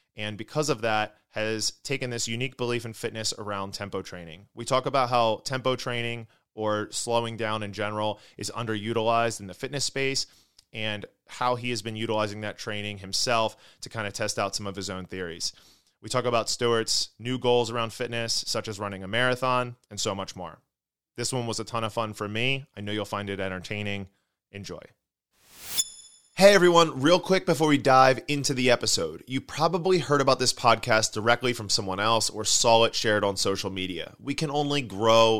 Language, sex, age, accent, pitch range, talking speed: English, male, 20-39, American, 105-125 Hz, 195 wpm